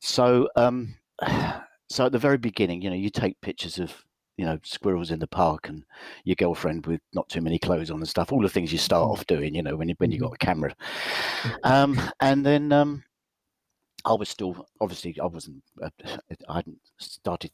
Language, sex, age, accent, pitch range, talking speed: English, male, 50-69, British, 90-120 Hz, 195 wpm